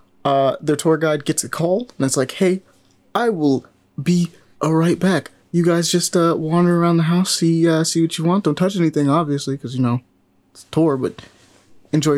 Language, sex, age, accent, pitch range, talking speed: English, male, 20-39, American, 130-170 Hz, 210 wpm